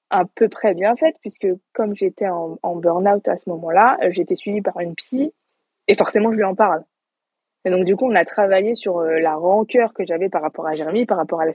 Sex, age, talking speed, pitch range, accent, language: female, 20-39, 240 wpm, 170-220 Hz, French, French